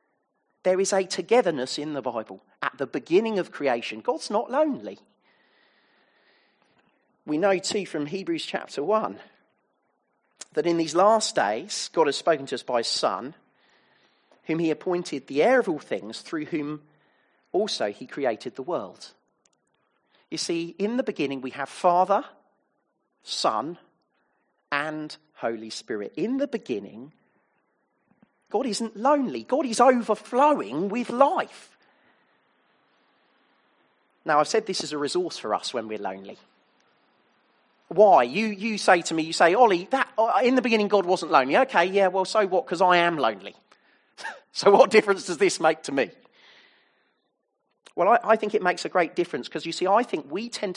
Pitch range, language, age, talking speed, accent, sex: 170-235 Hz, English, 40-59, 160 wpm, British, male